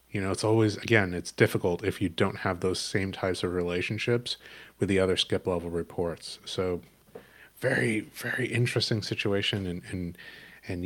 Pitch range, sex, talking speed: 85-105 Hz, male, 165 wpm